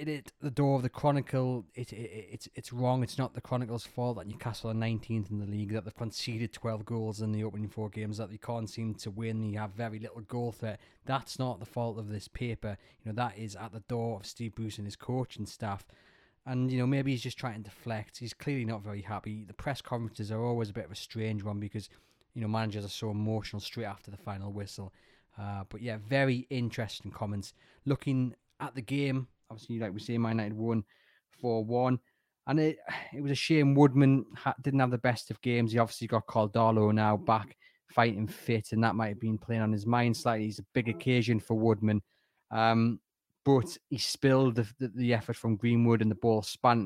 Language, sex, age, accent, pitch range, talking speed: English, male, 20-39, British, 110-125 Hz, 225 wpm